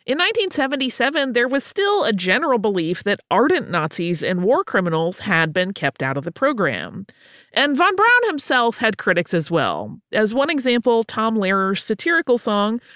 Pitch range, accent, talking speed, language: 175-260 Hz, American, 165 wpm, English